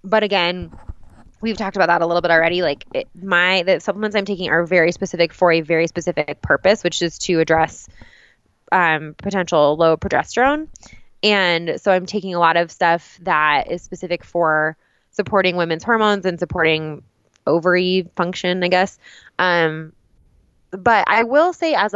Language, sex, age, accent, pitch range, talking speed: English, female, 20-39, American, 165-190 Hz, 165 wpm